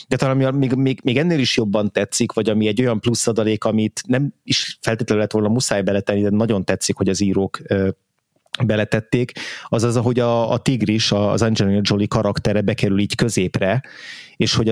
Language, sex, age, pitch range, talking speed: Hungarian, male, 30-49, 105-120 Hz, 190 wpm